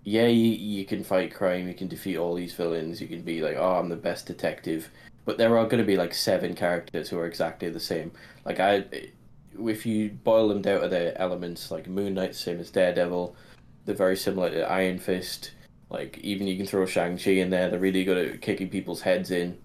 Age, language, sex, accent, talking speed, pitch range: 10-29, English, male, British, 225 wpm, 90-100 Hz